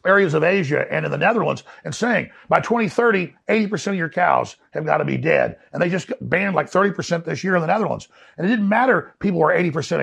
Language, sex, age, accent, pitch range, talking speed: English, male, 50-69, American, 165-200 Hz, 225 wpm